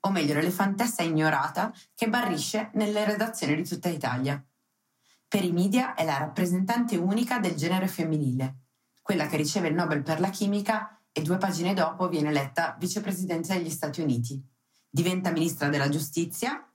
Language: Italian